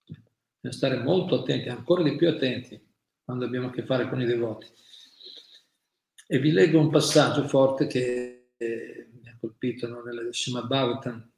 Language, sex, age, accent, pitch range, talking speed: Italian, male, 40-59, native, 120-135 Hz, 155 wpm